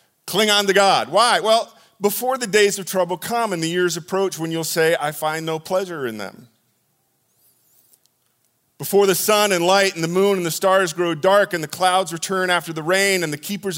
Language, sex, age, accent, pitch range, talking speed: English, male, 40-59, American, 150-200 Hz, 210 wpm